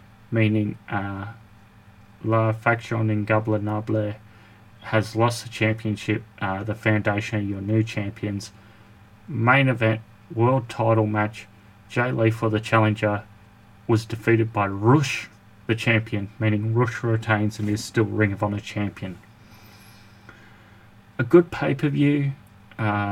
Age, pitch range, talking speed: 30-49, 105-110 Hz, 120 wpm